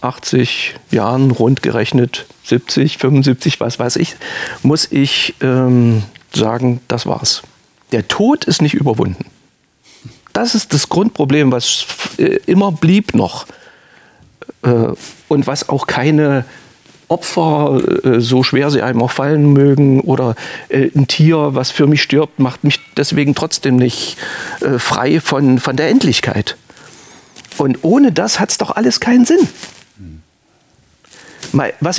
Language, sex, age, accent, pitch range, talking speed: German, male, 40-59, German, 125-190 Hz, 135 wpm